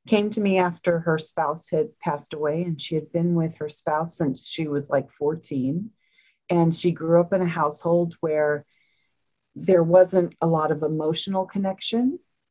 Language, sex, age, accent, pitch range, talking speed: English, female, 40-59, American, 155-190 Hz, 175 wpm